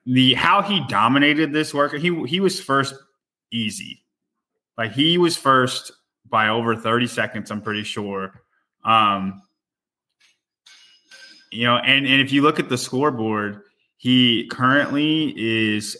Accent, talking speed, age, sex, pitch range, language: American, 135 wpm, 20-39, male, 115-145 Hz, English